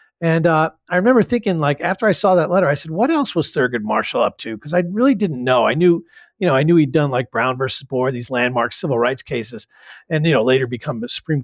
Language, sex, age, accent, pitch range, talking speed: English, male, 50-69, American, 140-190 Hz, 255 wpm